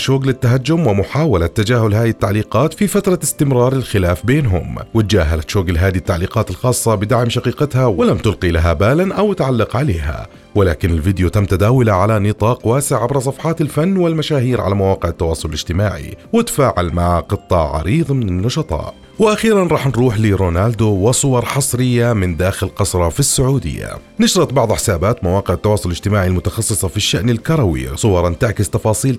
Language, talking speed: Arabic, 145 wpm